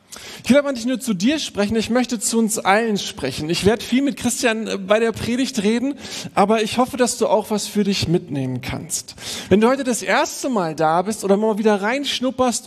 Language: German